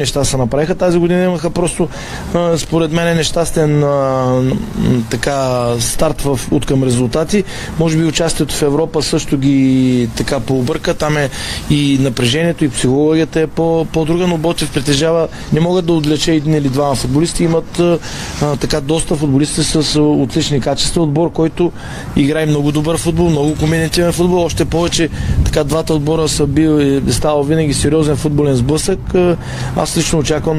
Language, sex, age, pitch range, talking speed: Bulgarian, male, 20-39, 140-160 Hz, 145 wpm